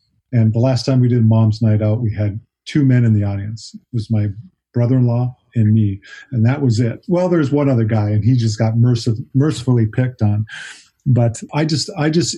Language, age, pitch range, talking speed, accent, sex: English, 40-59, 105-125 Hz, 210 wpm, American, male